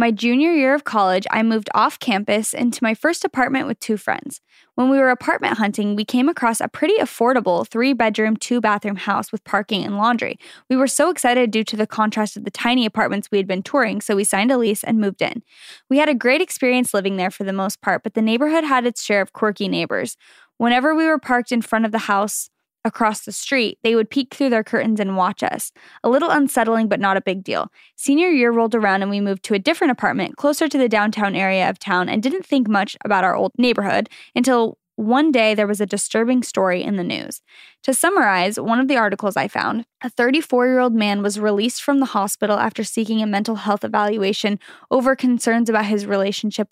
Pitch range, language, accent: 205-250 Hz, English, American